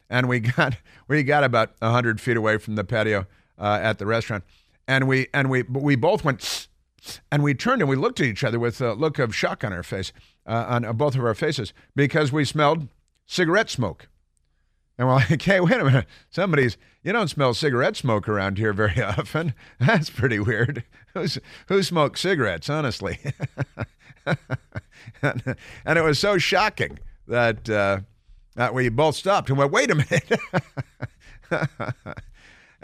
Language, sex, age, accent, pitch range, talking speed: English, male, 50-69, American, 110-150 Hz, 170 wpm